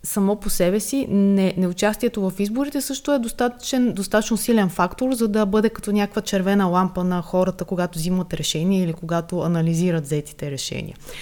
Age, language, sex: 20-39, Bulgarian, female